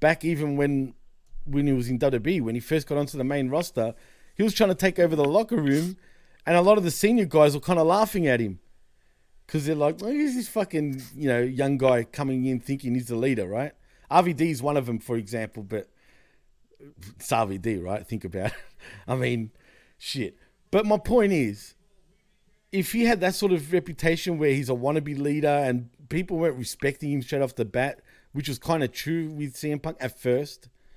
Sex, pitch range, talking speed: male, 125-180 Hz, 210 wpm